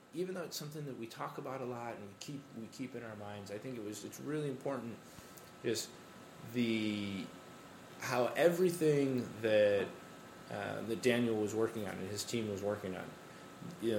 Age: 30-49